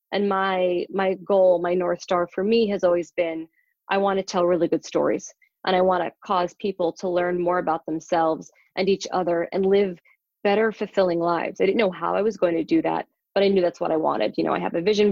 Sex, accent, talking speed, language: female, American, 240 wpm, English